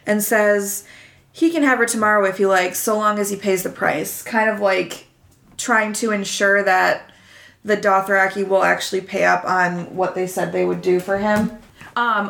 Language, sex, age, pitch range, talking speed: English, female, 20-39, 195-225 Hz, 195 wpm